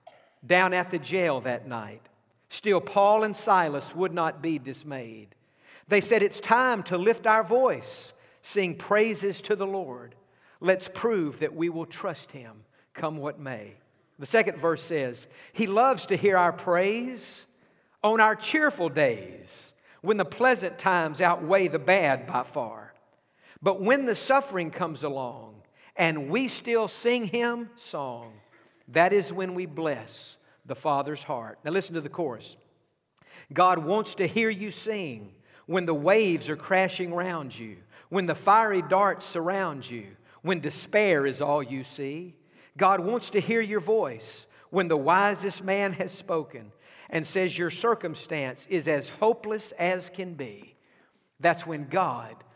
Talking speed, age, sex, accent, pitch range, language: 155 wpm, 50-69, male, American, 145-205 Hz, English